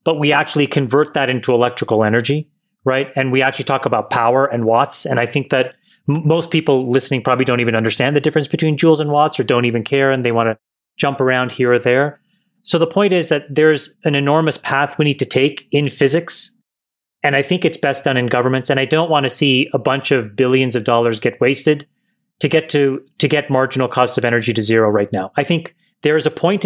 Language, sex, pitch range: English, male, 130-155 Hz